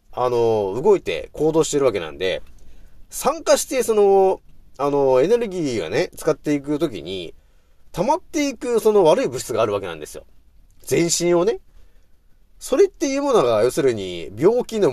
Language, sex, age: Japanese, male, 30-49